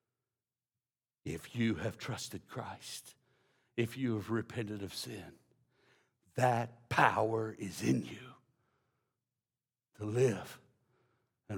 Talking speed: 100 wpm